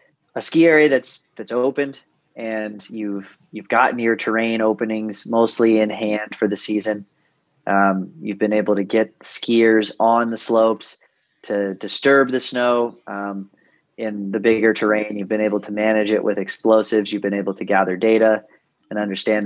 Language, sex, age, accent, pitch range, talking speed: English, male, 20-39, American, 105-125 Hz, 165 wpm